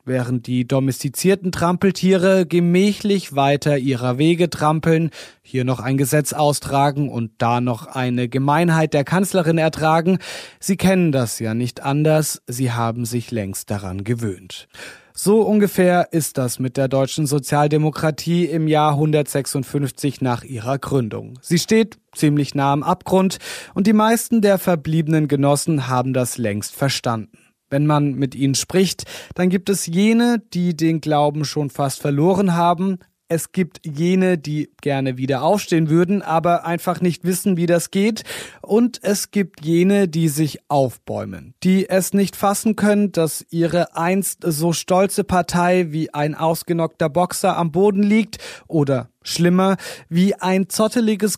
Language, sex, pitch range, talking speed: German, male, 140-185 Hz, 145 wpm